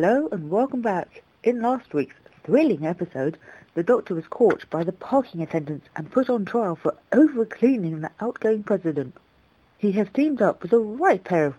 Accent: British